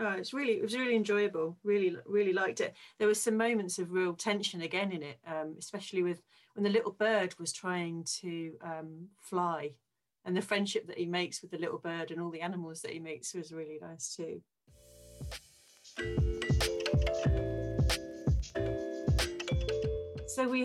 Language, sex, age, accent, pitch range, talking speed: English, female, 40-59, British, 155-185 Hz, 165 wpm